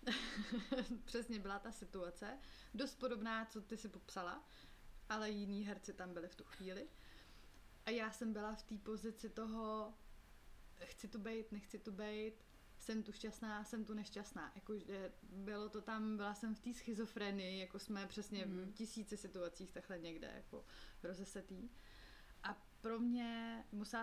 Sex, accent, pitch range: female, native, 185-220 Hz